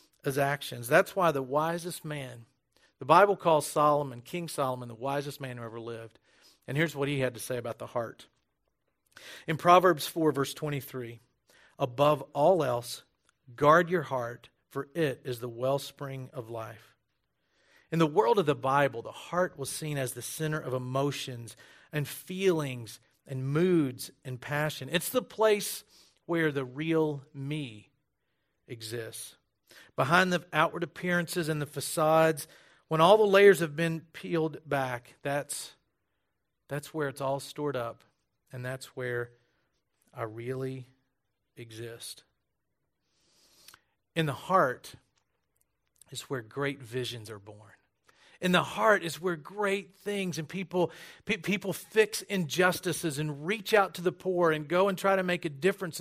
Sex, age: male, 50-69